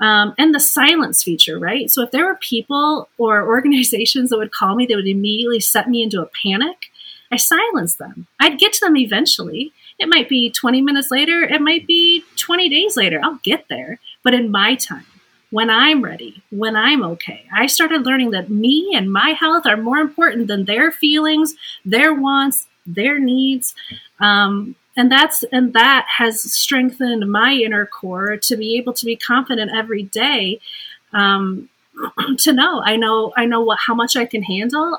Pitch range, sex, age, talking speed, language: 210-270 Hz, female, 30-49, 185 wpm, English